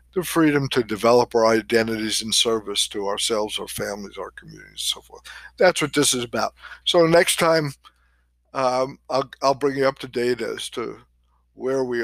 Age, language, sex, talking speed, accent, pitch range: 50-69, English, male, 185 wpm, American, 105-125 Hz